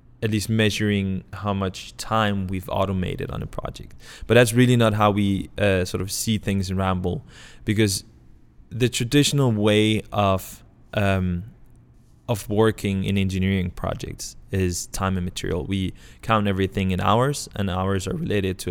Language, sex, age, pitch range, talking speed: Swedish, male, 20-39, 95-105 Hz, 155 wpm